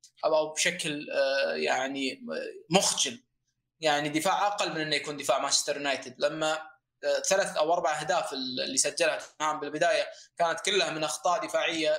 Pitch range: 150-170 Hz